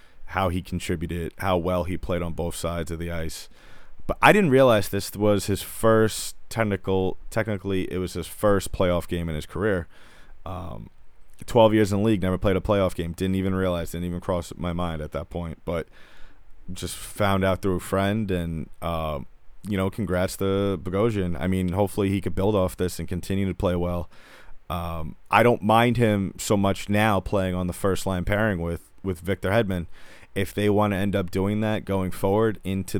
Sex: male